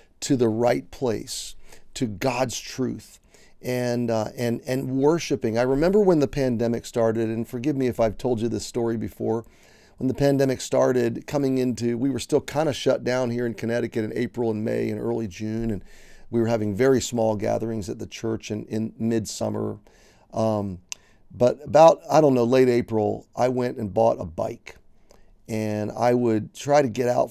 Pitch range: 110-130 Hz